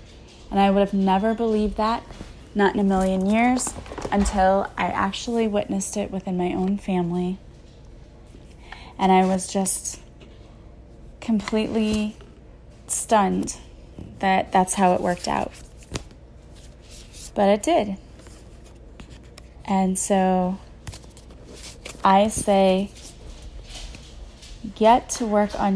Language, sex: English, female